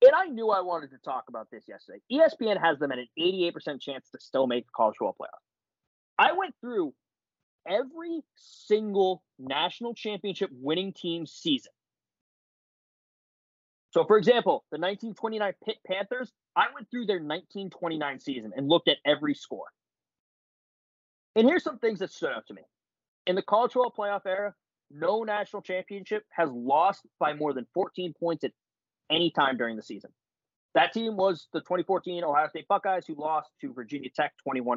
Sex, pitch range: male, 150-210 Hz